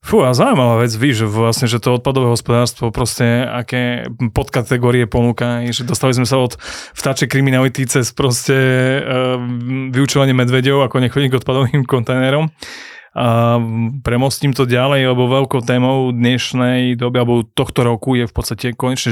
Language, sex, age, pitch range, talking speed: Slovak, male, 30-49, 120-135 Hz, 150 wpm